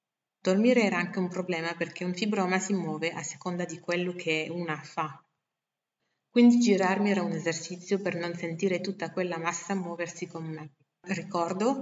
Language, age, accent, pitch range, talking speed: Italian, 30-49, native, 165-195 Hz, 160 wpm